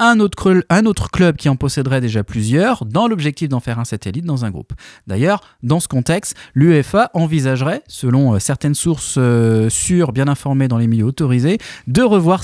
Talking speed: 175 wpm